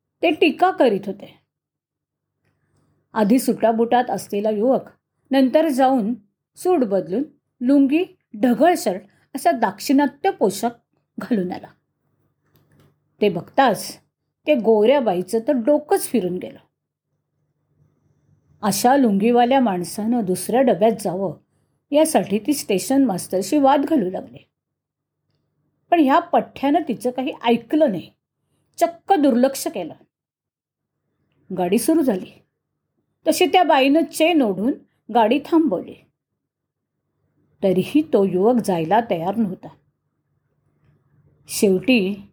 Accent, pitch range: native, 185-275 Hz